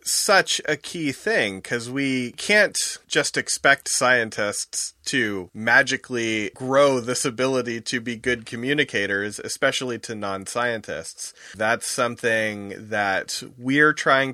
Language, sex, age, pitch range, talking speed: English, male, 30-49, 105-135 Hz, 115 wpm